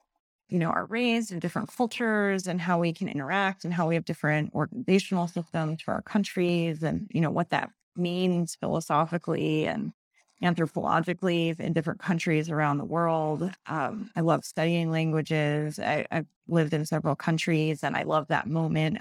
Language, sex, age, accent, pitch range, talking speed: English, female, 30-49, American, 160-185 Hz, 165 wpm